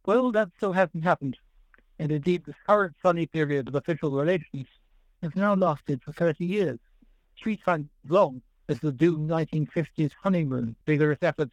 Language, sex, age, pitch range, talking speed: English, male, 60-79, 145-185 Hz, 160 wpm